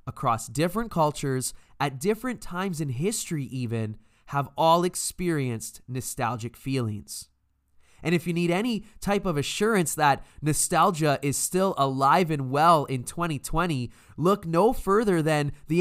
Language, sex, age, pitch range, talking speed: English, male, 20-39, 130-185 Hz, 135 wpm